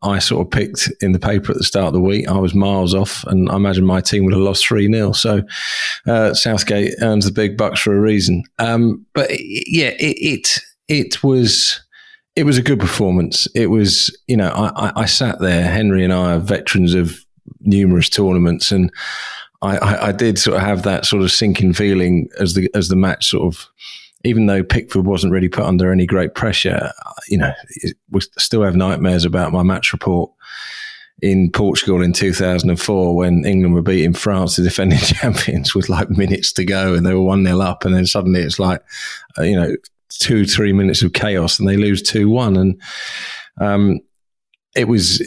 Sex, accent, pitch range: male, British, 90-105 Hz